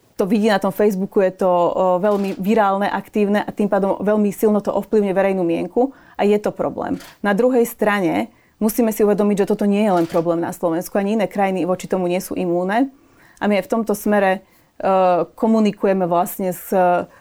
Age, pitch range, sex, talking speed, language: 30-49, 185-210 Hz, female, 190 wpm, Slovak